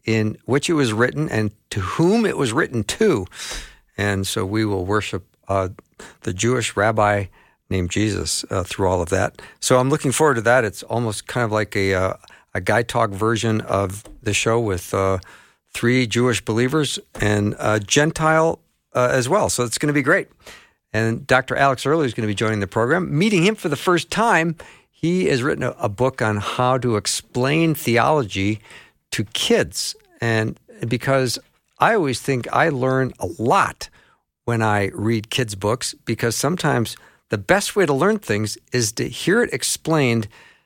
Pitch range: 100-130 Hz